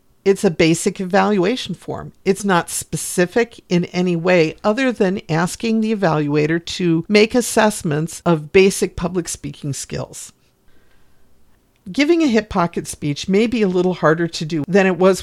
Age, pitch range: 50-69, 160-205 Hz